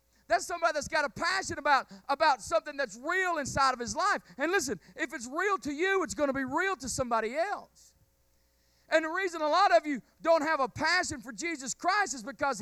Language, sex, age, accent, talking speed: English, male, 40-59, American, 220 wpm